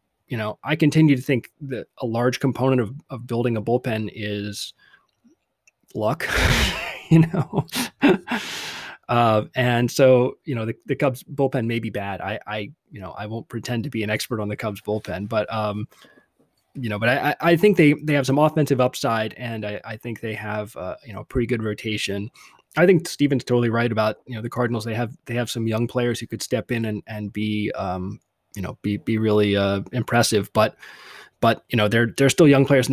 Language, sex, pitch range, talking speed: English, male, 110-130 Hz, 210 wpm